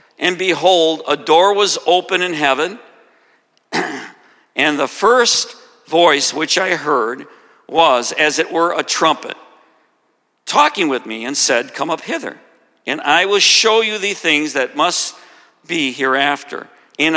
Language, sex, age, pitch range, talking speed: English, male, 50-69, 150-195 Hz, 145 wpm